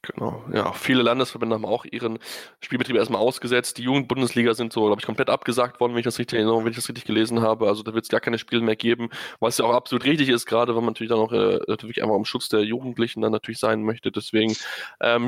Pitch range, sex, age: 115-135 Hz, male, 10-29